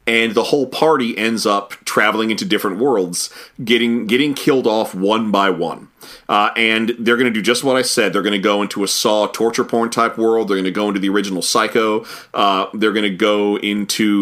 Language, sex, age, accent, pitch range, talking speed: English, male, 30-49, American, 100-115 Hz, 220 wpm